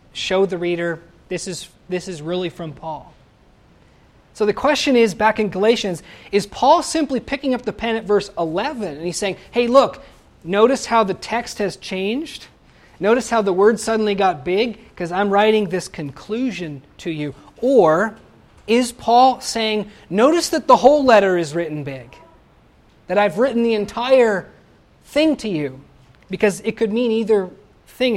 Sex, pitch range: male, 165-220 Hz